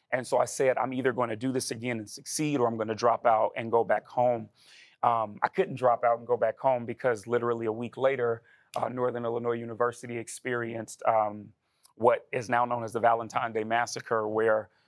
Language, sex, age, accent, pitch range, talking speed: English, male, 30-49, American, 115-135 Hz, 215 wpm